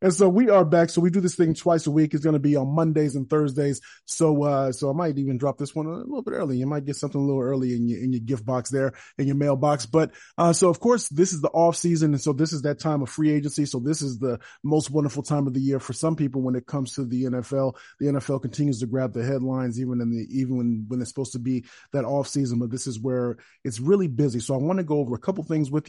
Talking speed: 290 wpm